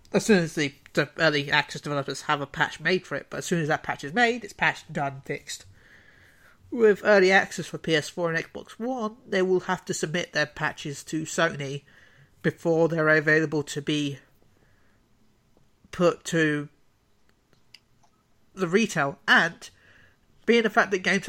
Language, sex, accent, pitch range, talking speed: English, male, British, 150-185 Hz, 160 wpm